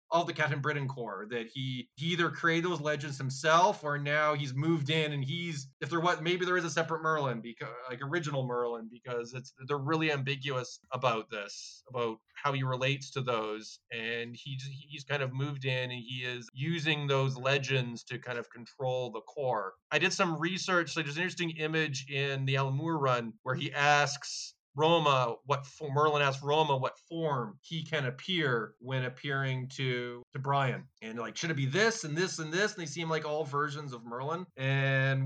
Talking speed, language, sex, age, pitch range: 195 wpm, English, male, 20-39, 130-160 Hz